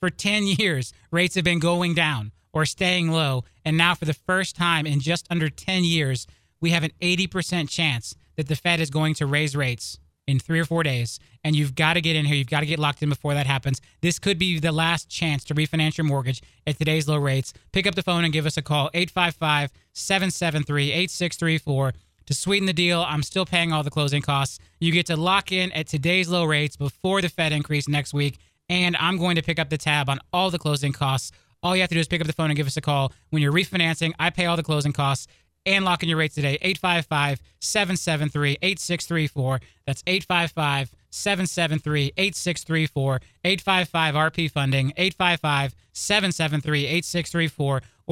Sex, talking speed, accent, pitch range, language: male, 190 wpm, American, 145-175 Hz, English